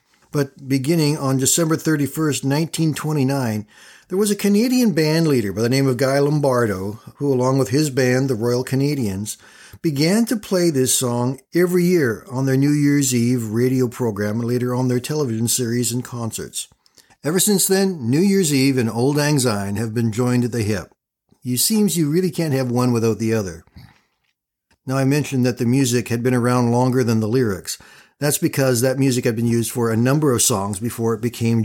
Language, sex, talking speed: English, male, 190 wpm